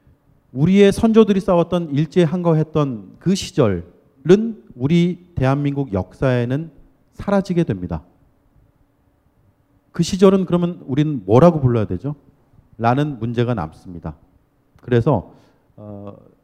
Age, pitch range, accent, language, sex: 40-59, 125-195 Hz, native, Korean, male